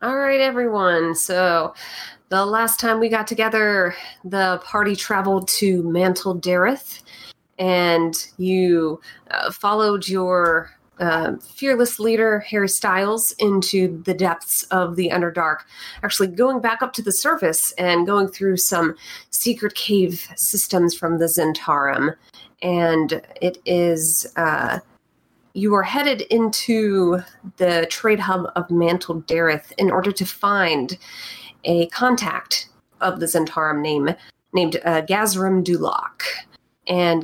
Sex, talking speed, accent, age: female, 125 wpm, American, 30-49